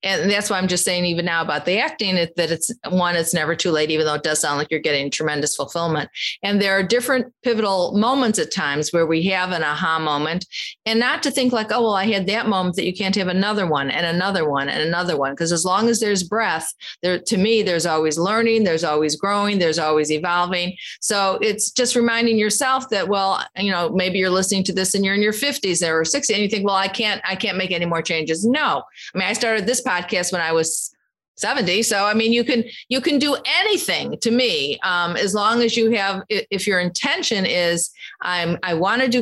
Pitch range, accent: 165-215 Hz, American